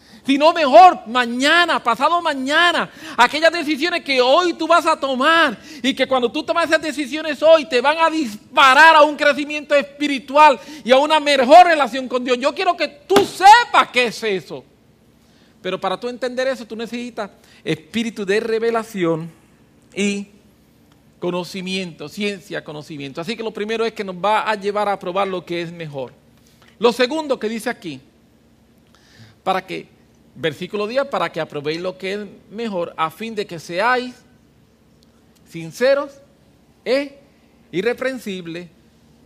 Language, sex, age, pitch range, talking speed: English, male, 40-59, 180-275 Hz, 150 wpm